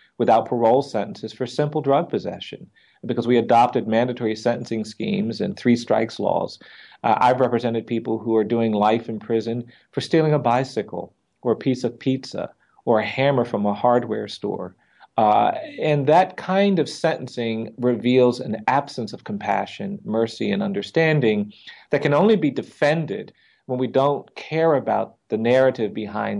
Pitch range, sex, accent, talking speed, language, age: 115-145 Hz, male, American, 160 wpm, English, 40-59